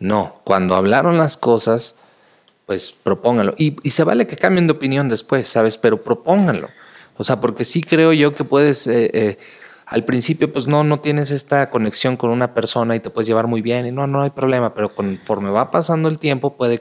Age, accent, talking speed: 30-49, Mexican, 205 wpm